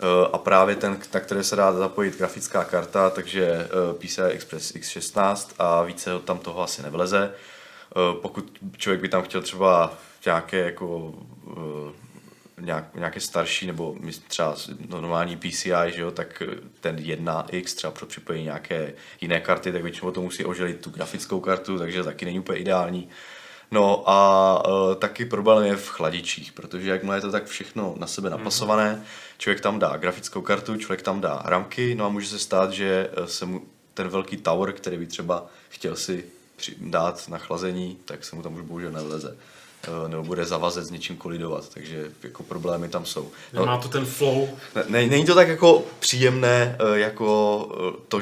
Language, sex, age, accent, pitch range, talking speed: Czech, male, 20-39, native, 90-105 Hz, 170 wpm